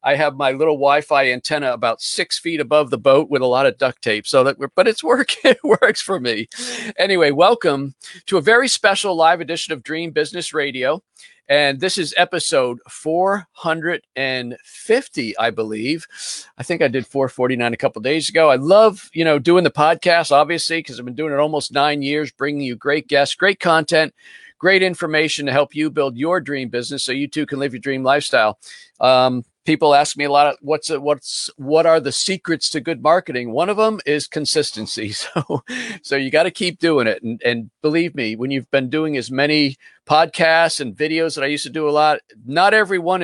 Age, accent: 50-69, American